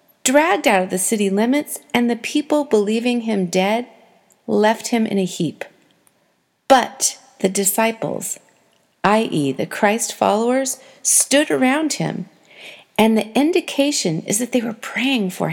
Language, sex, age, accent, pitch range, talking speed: English, female, 40-59, American, 205-280 Hz, 140 wpm